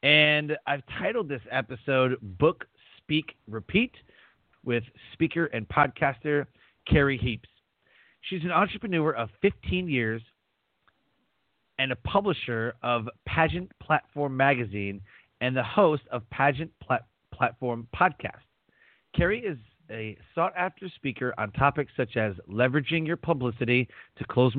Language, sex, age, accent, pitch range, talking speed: English, male, 40-59, American, 120-160 Hz, 120 wpm